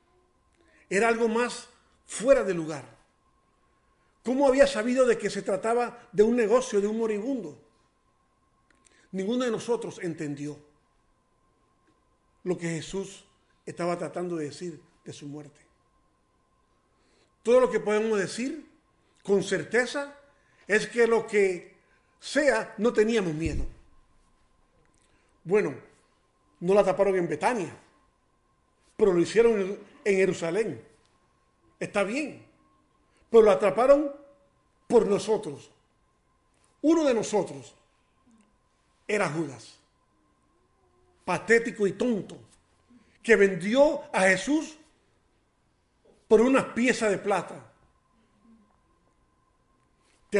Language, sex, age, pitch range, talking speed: Spanish, male, 50-69, 175-235 Hz, 100 wpm